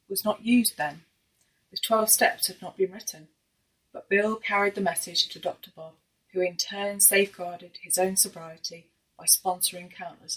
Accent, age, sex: British, 30-49, female